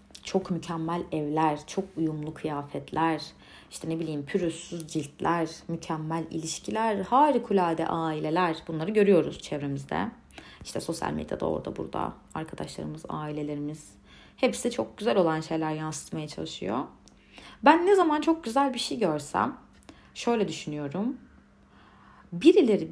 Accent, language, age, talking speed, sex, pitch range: native, Turkish, 30-49, 115 wpm, female, 160-235 Hz